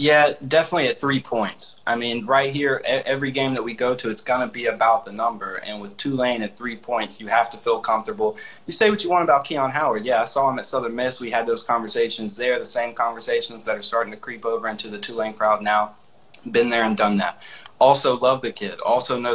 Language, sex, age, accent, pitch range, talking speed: English, male, 20-39, American, 110-130 Hz, 240 wpm